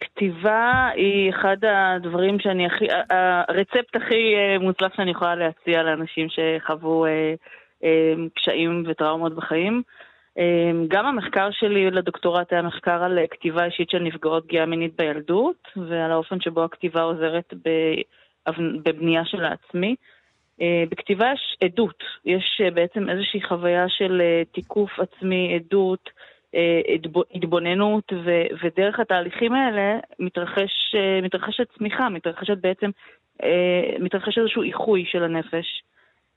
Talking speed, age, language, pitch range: 105 wpm, 20-39, Hebrew, 170-195 Hz